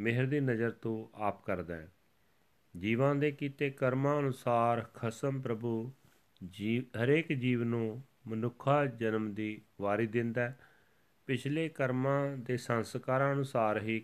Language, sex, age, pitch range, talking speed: Punjabi, male, 40-59, 105-130 Hz, 130 wpm